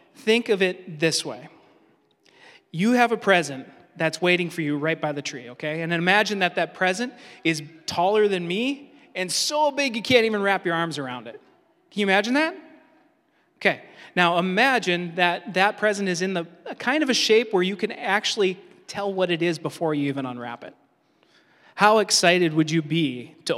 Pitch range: 155-220 Hz